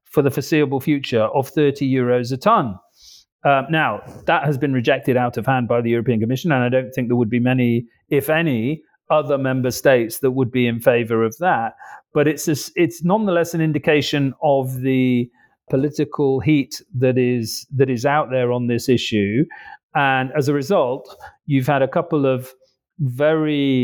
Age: 40-59